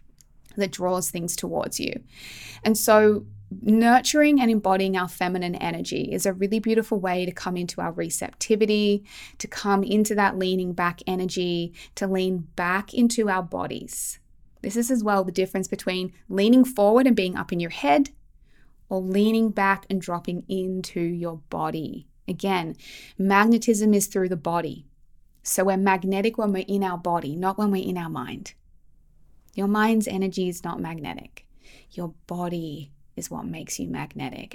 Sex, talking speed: female, 160 wpm